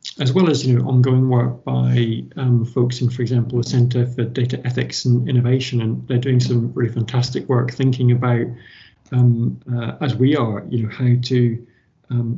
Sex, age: male, 50-69